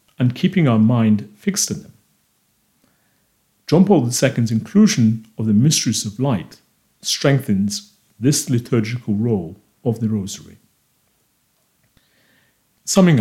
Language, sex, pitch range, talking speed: English, male, 110-140 Hz, 110 wpm